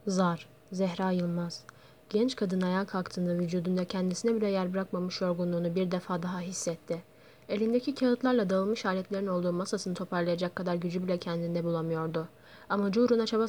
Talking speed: 140 wpm